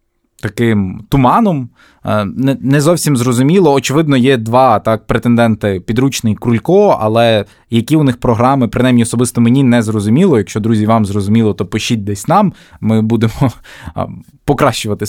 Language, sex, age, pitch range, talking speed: Ukrainian, male, 20-39, 115-145 Hz, 130 wpm